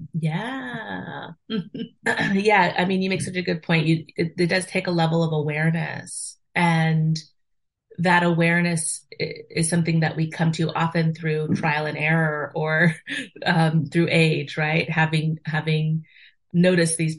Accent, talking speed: American, 145 wpm